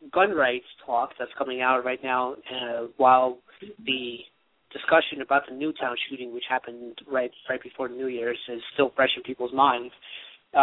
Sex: male